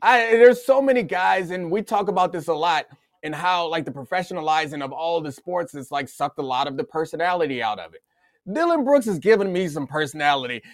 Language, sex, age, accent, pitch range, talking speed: English, male, 30-49, American, 160-210 Hz, 220 wpm